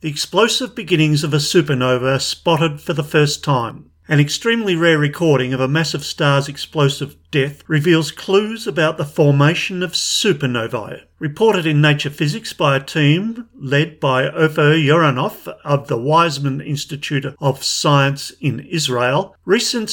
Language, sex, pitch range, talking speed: English, male, 135-170 Hz, 150 wpm